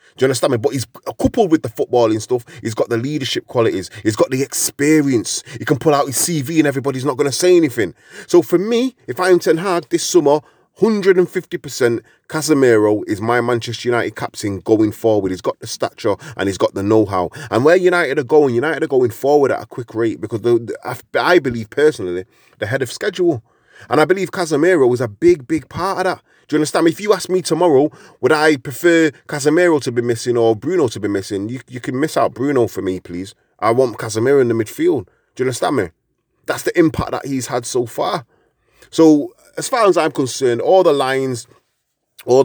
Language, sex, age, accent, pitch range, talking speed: English, male, 20-39, British, 115-160 Hz, 215 wpm